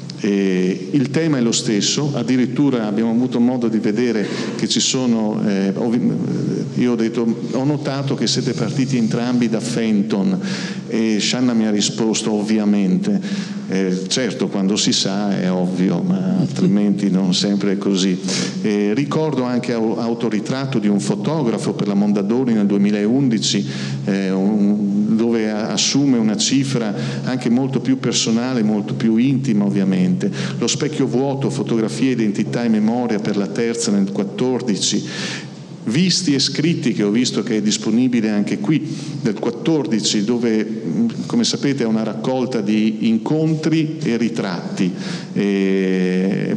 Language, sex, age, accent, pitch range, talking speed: Italian, male, 50-69, native, 105-140 Hz, 140 wpm